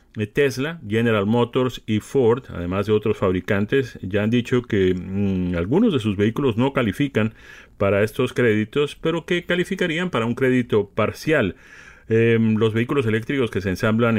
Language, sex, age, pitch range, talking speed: Spanish, male, 40-59, 95-120 Hz, 150 wpm